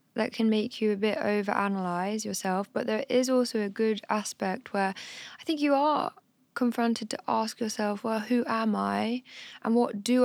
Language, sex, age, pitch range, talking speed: English, female, 10-29, 195-240 Hz, 180 wpm